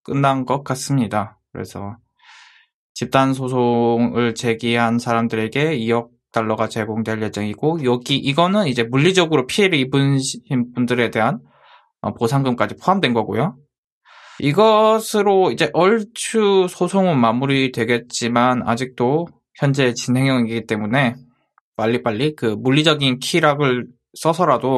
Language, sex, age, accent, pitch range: Korean, male, 20-39, native, 115-140 Hz